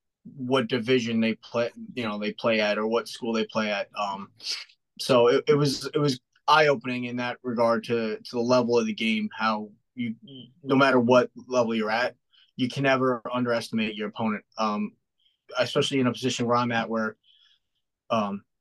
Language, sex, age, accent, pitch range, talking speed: English, male, 20-39, American, 115-130 Hz, 185 wpm